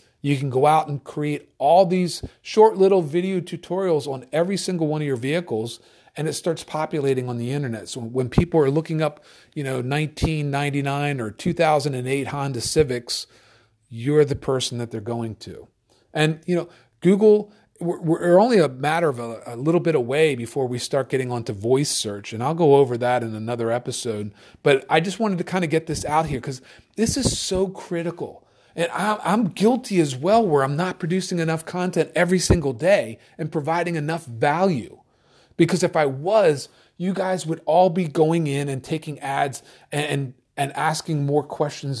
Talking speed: 180 wpm